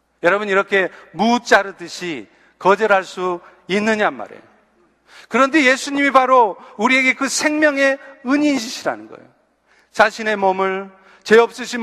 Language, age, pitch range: Korean, 40-59, 195-255 Hz